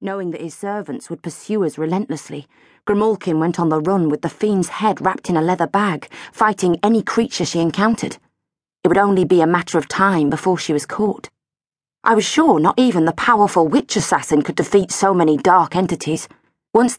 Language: English